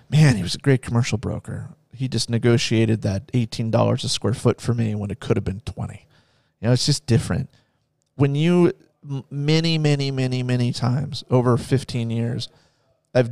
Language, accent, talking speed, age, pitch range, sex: English, American, 175 wpm, 30-49, 115-135 Hz, male